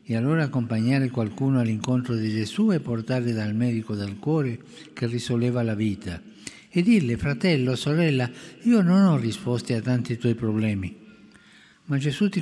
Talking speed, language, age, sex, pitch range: 155 wpm, Italian, 60-79, male, 105-135 Hz